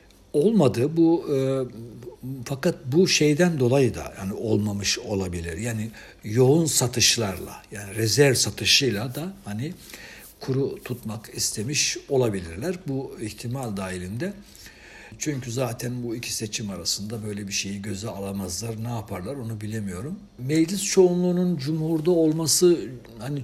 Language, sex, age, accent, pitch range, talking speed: Turkish, male, 60-79, native, 105-140 Hz, 120 wpm